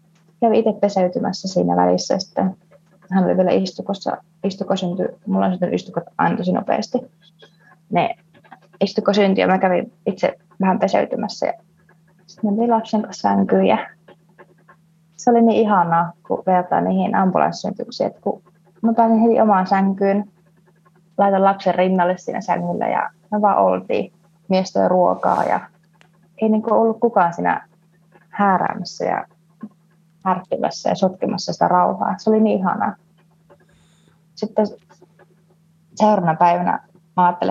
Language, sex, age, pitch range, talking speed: Finnish, female, 20-39, 170-200 Hz, 115 wpm